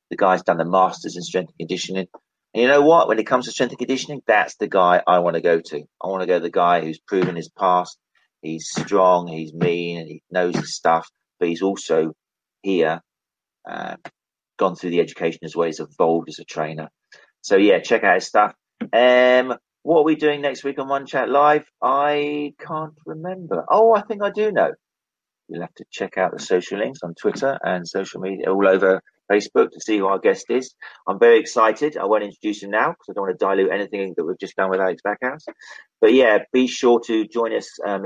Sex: male